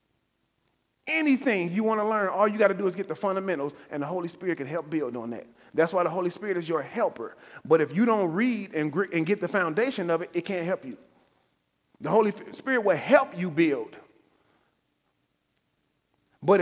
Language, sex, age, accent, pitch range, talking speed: English, male, 40-59, American, 165-200 Hz, 195 wpm